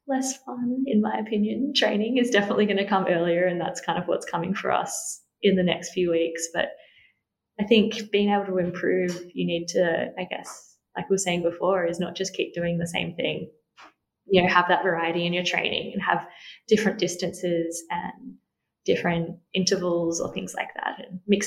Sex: female